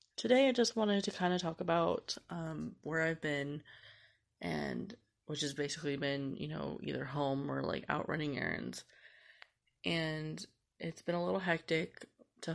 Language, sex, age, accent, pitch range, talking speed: English, female, 20-39, American, 145-195 Hz, 165 wpm